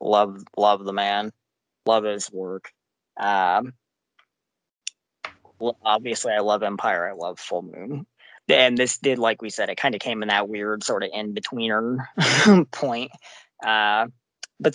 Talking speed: 145 wpm